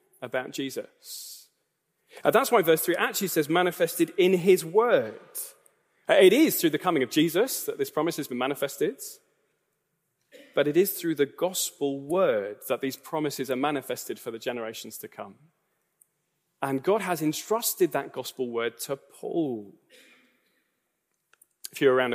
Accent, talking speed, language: British, 150 wpm, English